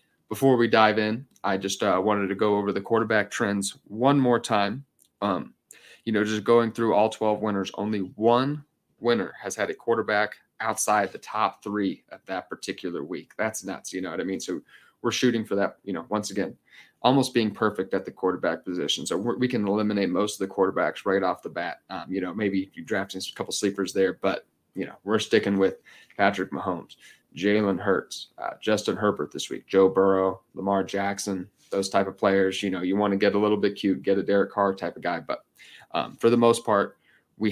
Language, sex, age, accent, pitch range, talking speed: English, male, 30-49, American, 95-110 Hz, 215 wpm